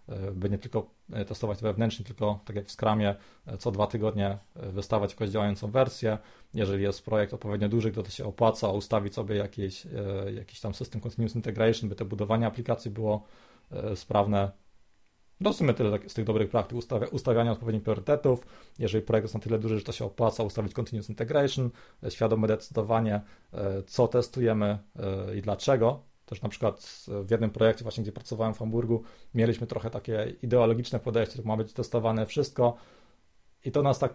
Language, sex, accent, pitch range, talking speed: Polish, male, native, 105-120 Hz, 165 wpm